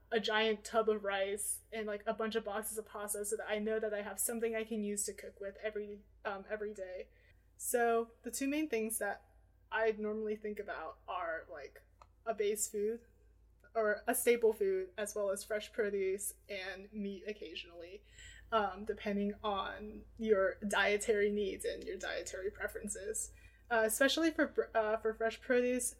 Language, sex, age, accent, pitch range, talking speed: English, female, 20-39, American, 210-230 Hz, 175 wpm